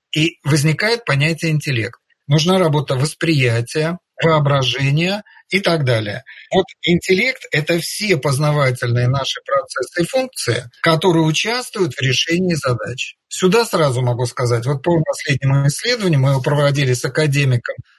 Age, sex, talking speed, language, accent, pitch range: 50-69, male, 125 wpm, Russian, native, 130-175 Hz